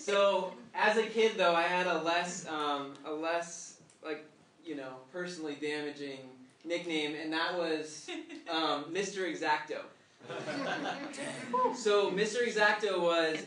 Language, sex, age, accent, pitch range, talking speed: English, male, 20-39, American, 165-205 Hz, 125 wpm